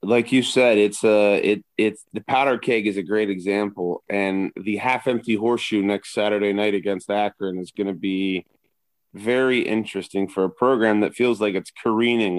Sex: male